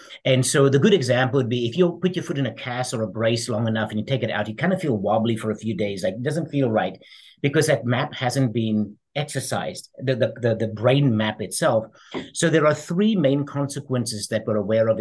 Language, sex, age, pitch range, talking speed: English, male, 50-69, 110-140 Hz, 245 wpm